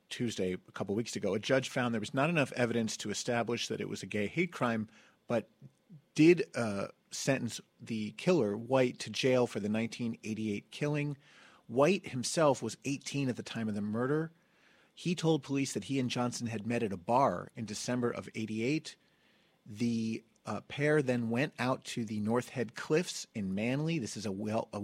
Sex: male